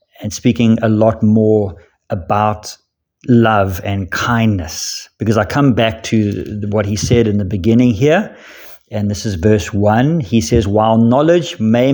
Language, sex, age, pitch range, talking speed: English, male, 50-69, 105-120 Hz, 155 wpm